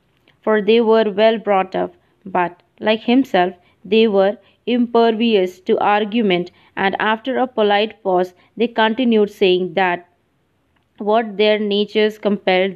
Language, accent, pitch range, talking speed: English, Indian, 190-225 Hz, 125 wpm